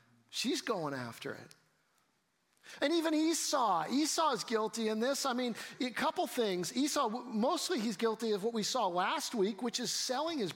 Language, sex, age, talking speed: English, male, 50-69, 175 wpm